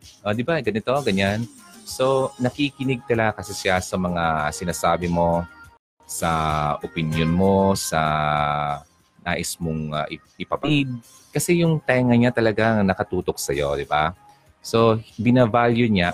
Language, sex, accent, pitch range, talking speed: Filipino, male, native, 85-115 Hz, 130 wpm